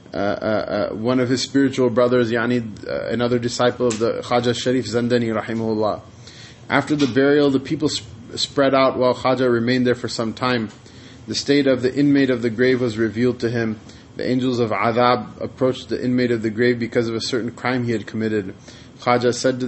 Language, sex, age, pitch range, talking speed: English, male, 20-39, 115-130 Hz, 200 wpm